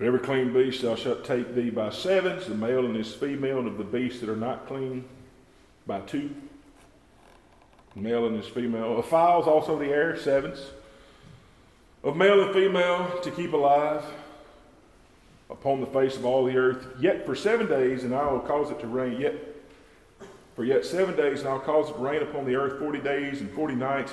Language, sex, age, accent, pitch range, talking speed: English, male, 40-59, American, 130-160 Hz, 200 wpm